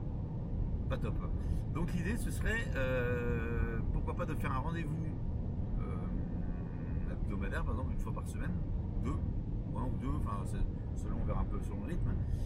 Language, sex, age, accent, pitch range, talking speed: French, male, 40-59, French, 80-105 Hz, 170 wpm